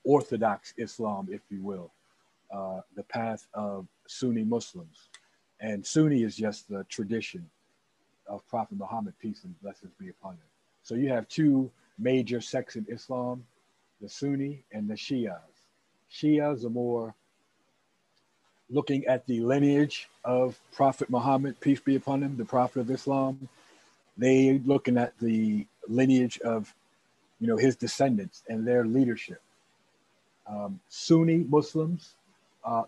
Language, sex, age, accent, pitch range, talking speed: English, male, 50-69, American, 110-140 Hz, 135 wpm